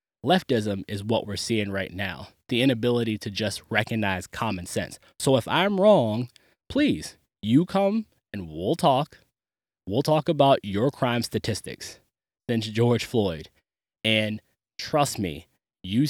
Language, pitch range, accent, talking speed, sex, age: English, 100-120 Hz, American, 140 wpm, male, 20-39